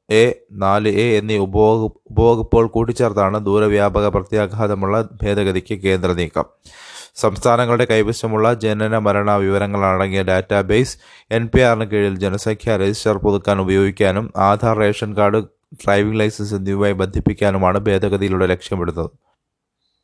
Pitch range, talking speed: 95-110 Hz, 100 wpm